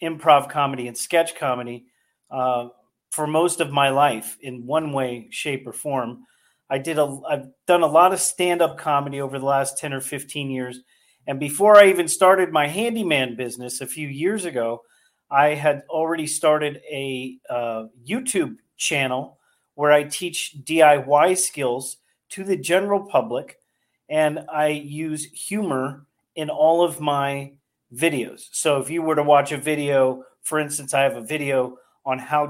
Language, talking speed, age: English, 165 wpm, 40-59